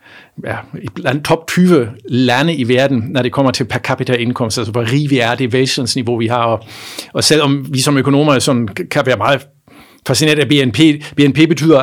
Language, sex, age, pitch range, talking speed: Danish, male, 50-69, 120-140 Hz, 195 wpm